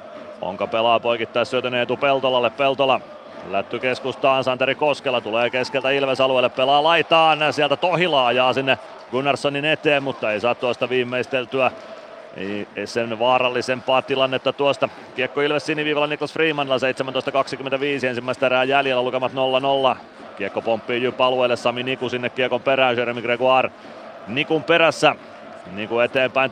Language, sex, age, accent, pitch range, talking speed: Finnish, male, 30-49, native, 125-140 Hz, 135 wpm